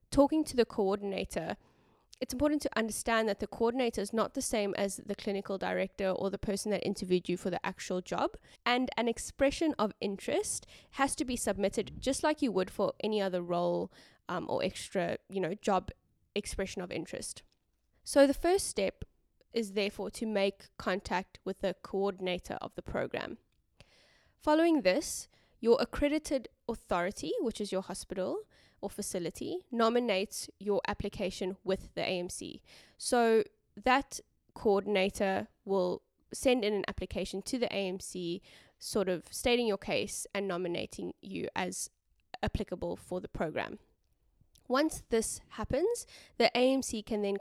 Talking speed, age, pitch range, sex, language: 150 wpm, 10-29, 190-245 Hz, female, English